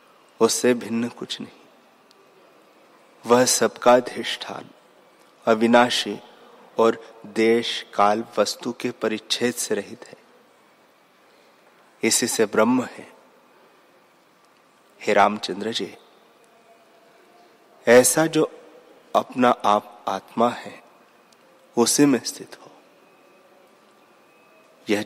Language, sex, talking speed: Hindi, male, 80 wpm